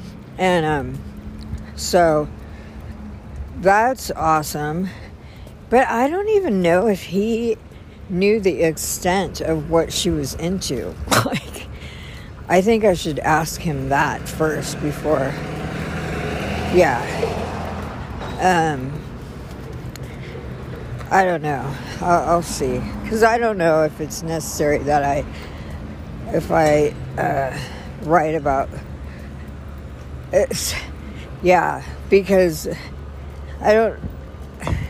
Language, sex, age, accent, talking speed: English, female, 60-79, American, 100 wpm